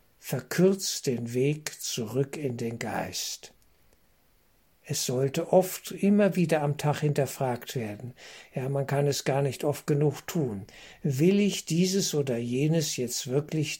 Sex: male